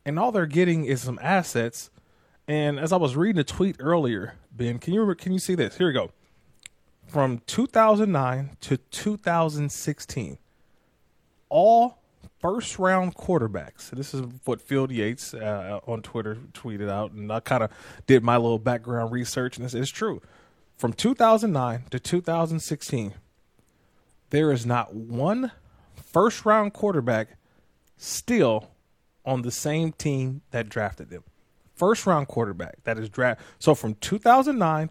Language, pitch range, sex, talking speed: English, 120-160 Hz, male, 140 wpm